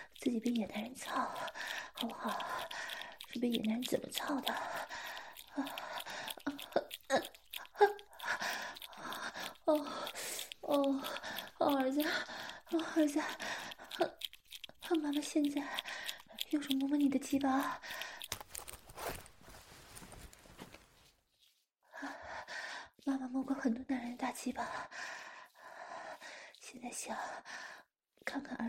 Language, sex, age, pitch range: English, female, 20-39, 250-325 Hz